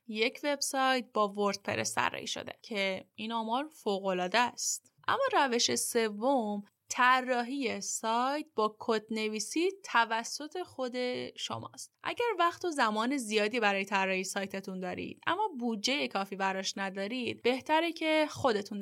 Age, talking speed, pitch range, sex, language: 10-29, 120 wpm, 205-265 Hz, female, Persian